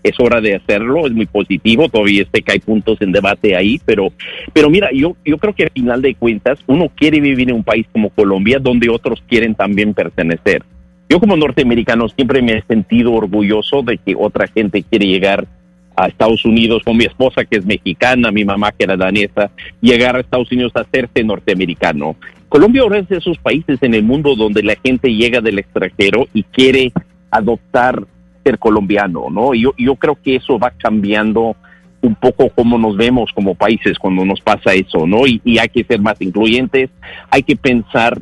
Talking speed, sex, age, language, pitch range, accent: 195 wpm, male, 50-69, Spanish, 105-130 Hz, Mexican